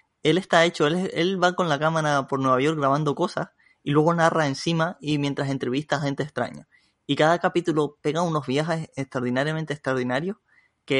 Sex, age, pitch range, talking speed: male, 20-39, 130-155 Hz, 180 wpm